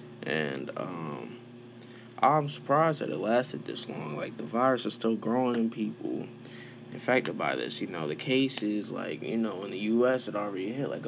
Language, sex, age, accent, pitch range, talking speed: English, male, 20-39, American, 115-125 Hz, 185 wpm